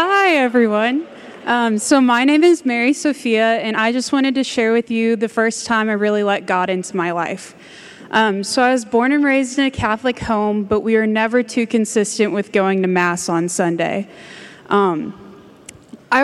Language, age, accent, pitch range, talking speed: English, 20-39, American, 200-245 Hz, 190 wpm